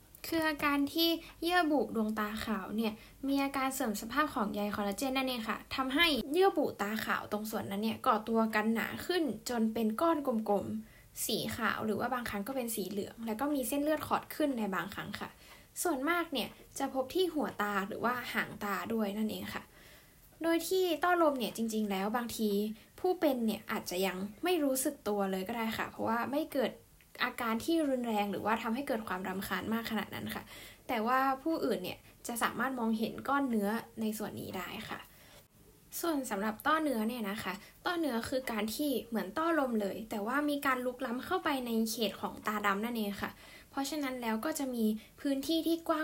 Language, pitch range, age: Thai, 210-280 Hz, 10-29